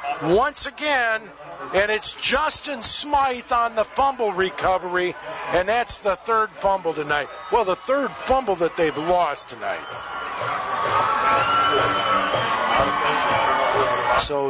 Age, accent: 50-69, American